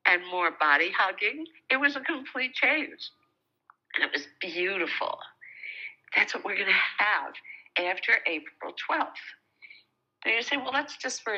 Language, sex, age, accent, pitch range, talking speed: English, female, 60-79, American, 165-255 Hz, 150 wpm